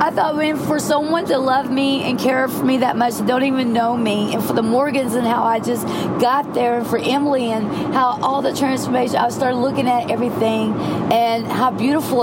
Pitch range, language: 230-265 Hz, English